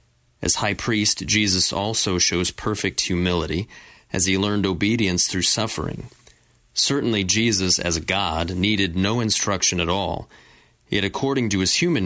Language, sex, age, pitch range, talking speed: English, male, 30-49, 90-110 Hz, 140 wpm